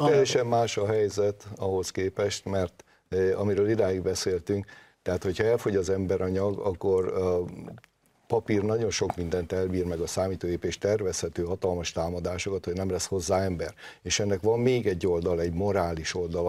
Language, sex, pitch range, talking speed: Hungarian, male, 90-110 Hz, 165 wpm